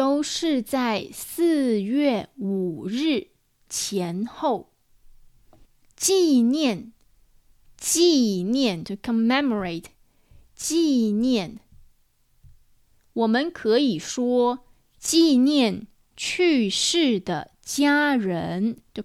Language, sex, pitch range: English, female, 205-290 Hz